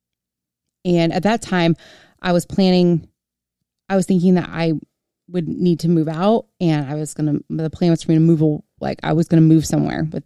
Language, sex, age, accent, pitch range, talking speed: English, female, 20-39, American, 150-180 Hz, 215 wpm